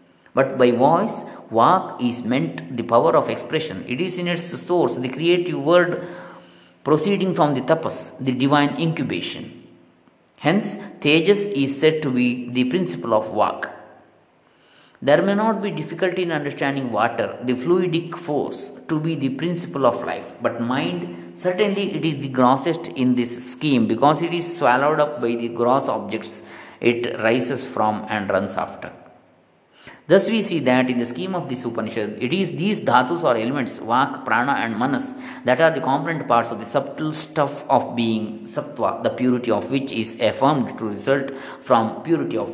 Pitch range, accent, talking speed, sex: 120-170 Hz, native, 170 wpm, male